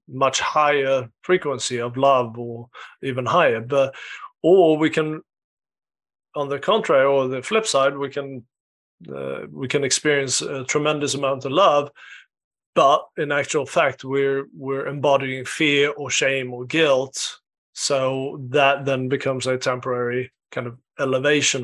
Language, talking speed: English, 140 wpm